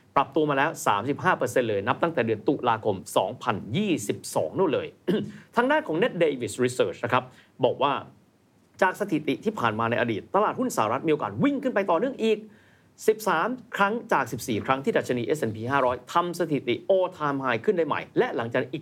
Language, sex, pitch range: Thai, male, 125-205 Hz